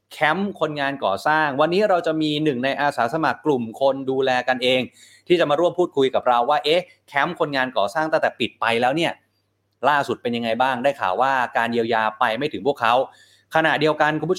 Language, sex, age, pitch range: Thai, male, 20-39, 125-155 Hz